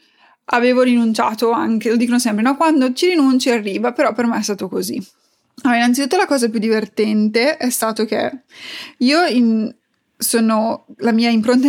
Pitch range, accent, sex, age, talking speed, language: 220-275 Hz, native, female, 20-39, 165 wpm, Italian